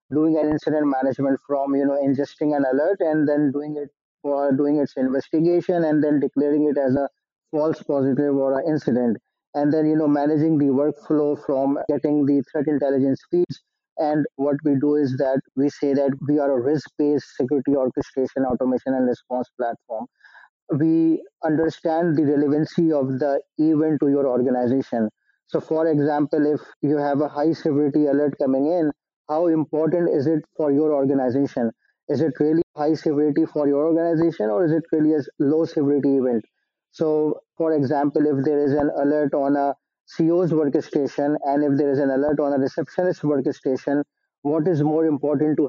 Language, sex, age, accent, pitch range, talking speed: English, male, 20-39, Indian, 140-155 Hz, 175 wpm